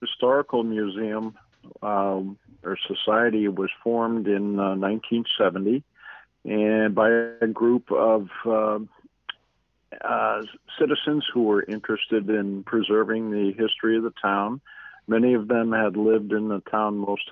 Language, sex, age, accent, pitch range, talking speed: English, male, 50-69, American, 100-115 Hz, 130 wpm